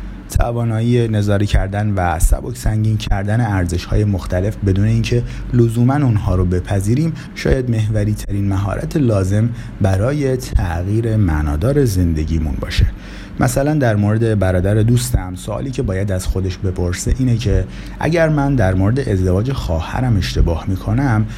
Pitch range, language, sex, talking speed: 95-115 Hz, Persian, male, 125 wpm